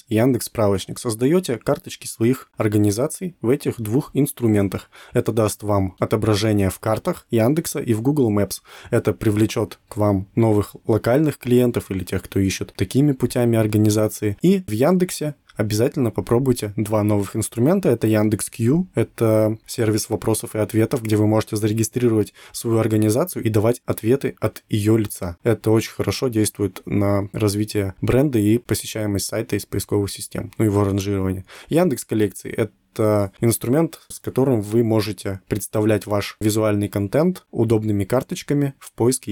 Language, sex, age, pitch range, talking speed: Russian, male, 20-39, 105-125 Hz, 145 wpm